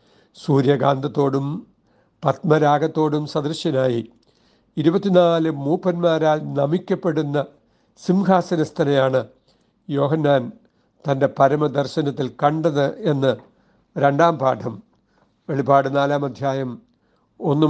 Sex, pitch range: male, 140-170 Hz